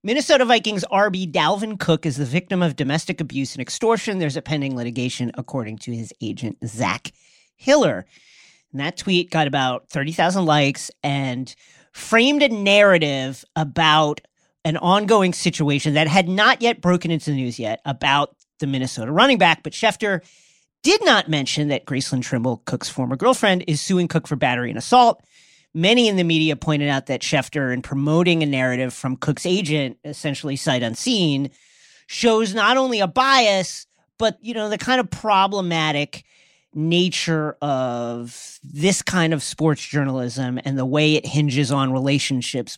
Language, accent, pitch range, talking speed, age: English, American, 135-190 Hz, 160 wpm, 40-59